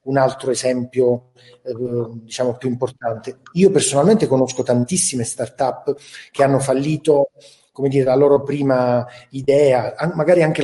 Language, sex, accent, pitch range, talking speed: Italian, male, native, 130-170 Hz, 125 wpm